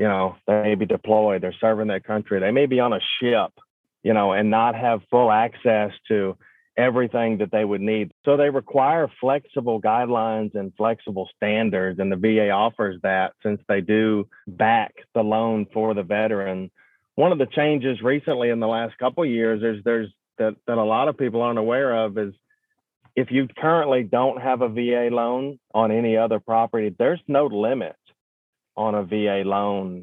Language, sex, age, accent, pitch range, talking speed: English, male, 40-59, American, 105-120 Hz, 180 wpm